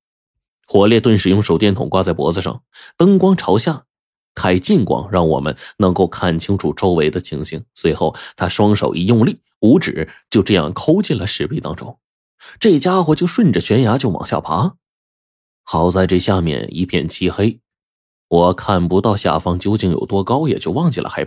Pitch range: 85-115 Hz